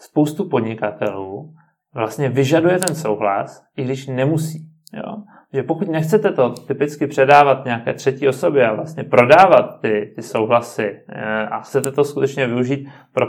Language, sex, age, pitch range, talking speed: Czech, male, 30-49, 115-145 Hz, 145 wpm